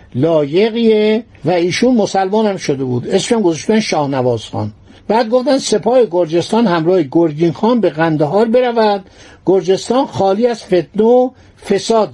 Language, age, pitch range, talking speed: Persian, 60-79, 160-225 Hz, 140 wpm